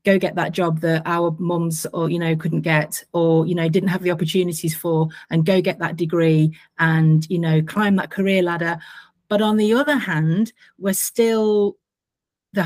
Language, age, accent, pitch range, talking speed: English, 30-49, British, 170-205 Hz, 190 wpm